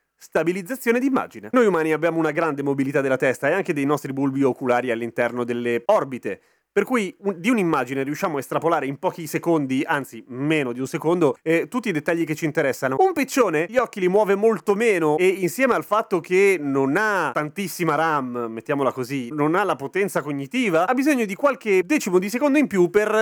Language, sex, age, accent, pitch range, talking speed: Italian, male, 30-49, native, 140-195 Hz, 195 wpm